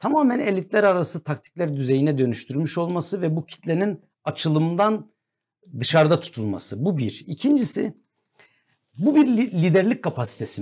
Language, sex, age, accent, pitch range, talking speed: Turkish, male, 60-79, native, 125-190 Hz, 115 wpm